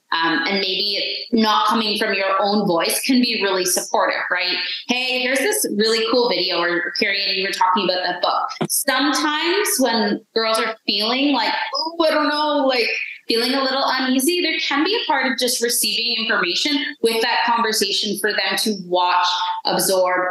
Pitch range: 185-270 Hz